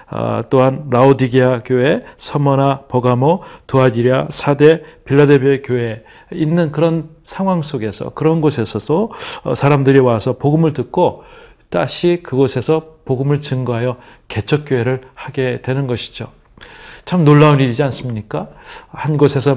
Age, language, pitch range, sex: 40-59, Korean, 125-150 Hz, male